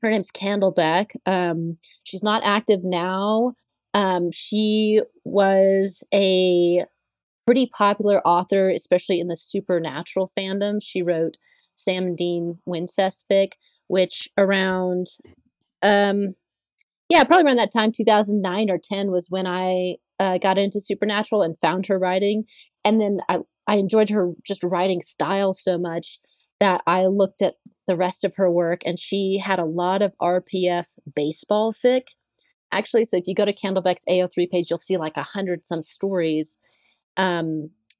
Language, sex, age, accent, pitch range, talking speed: English, female, 30-49, American, 180-205 Hz, 145 wpm